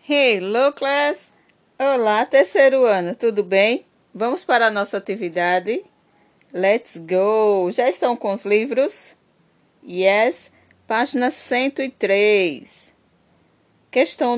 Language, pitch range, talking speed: Portuguese, 200-260 Hz, 95 wpm